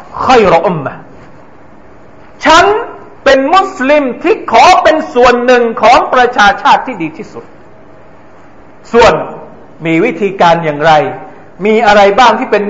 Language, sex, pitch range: Thai, male, 155-235 Hz